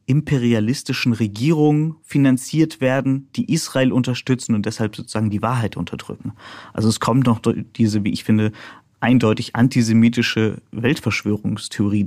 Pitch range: 110-130 Hz